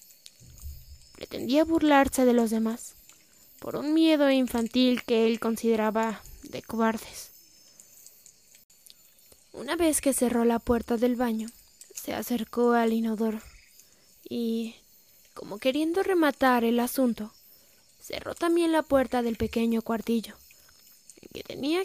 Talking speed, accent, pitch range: 115 wpm, Mexican, 225-275 Hz